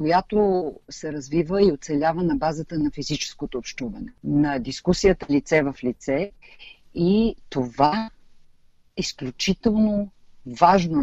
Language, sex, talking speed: Bulgarian, female, 110 wpm